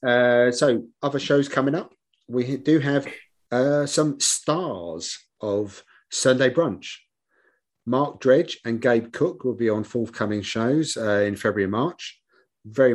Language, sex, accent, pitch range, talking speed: English, male, British, 105-125 Hz, 145 wpm